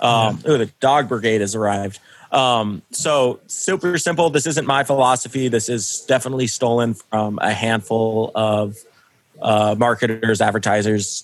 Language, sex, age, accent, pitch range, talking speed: English, male, 20-39, American, 110-130 Hz, 135 wpm